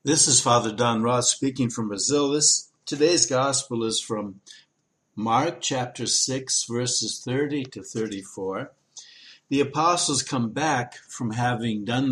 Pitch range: 115-145 Hz